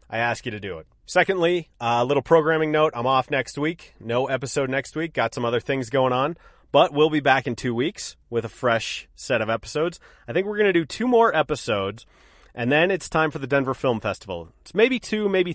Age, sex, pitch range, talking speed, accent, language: 30-49, male, 115-155 Hz, 230 wpm, American, English